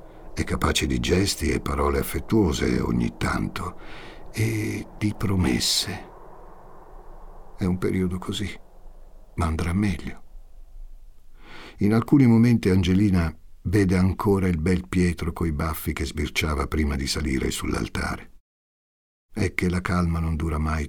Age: 60-79